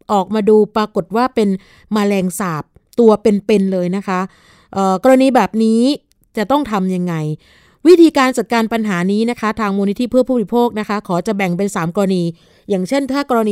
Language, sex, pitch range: Thai, female, 195-245 Hz